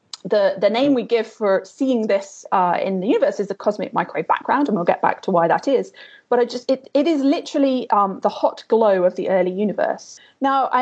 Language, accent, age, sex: English, British, 30-49, female